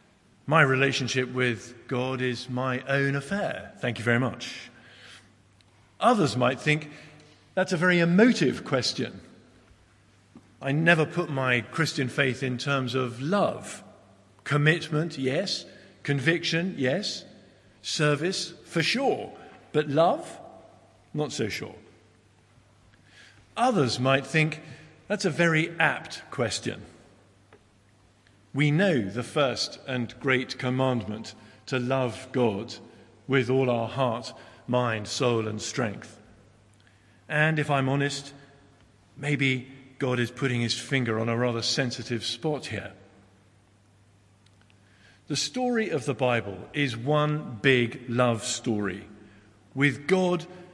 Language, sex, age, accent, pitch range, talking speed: English, male, 50-69, British, 105-145 Hz, 115 wpm